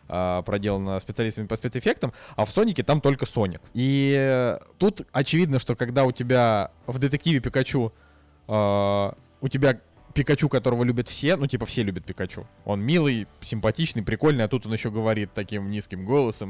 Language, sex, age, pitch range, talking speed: Russian, male, 20-39, 105-140 Hz, 160 wpm